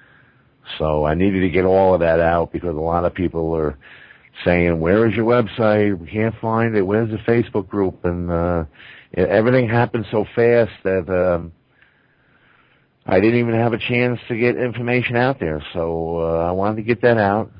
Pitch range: 95-120 Hz